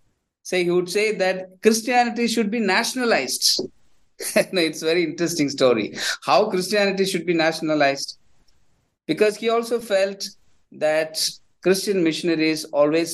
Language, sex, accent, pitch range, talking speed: English, male, Indian, 130-190 Hz, 130 wpm